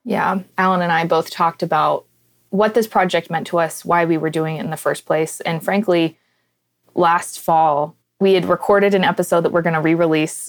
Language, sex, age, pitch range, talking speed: English, female, 20-39, 155-180 Hz, 205 wpm